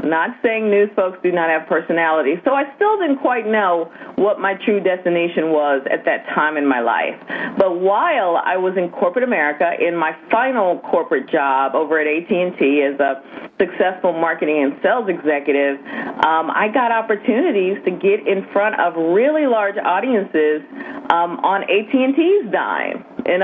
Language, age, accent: English, 40-59, American